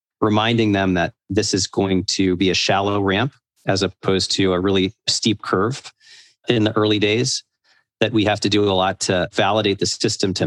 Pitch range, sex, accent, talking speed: 95-110 Hz, male, American, 195 wpm